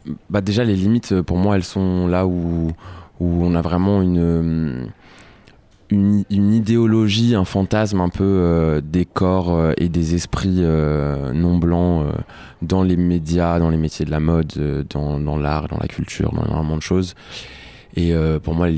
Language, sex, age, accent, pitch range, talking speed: French, male, 20-39, French, 80-90 Hz, 185 wpm